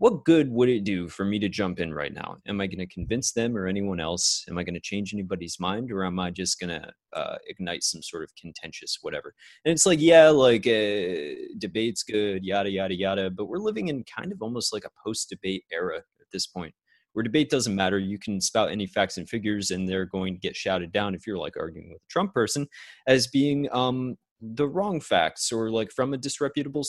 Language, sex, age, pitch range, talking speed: English, male, 30-49, 100-150 Hz, 230 wpm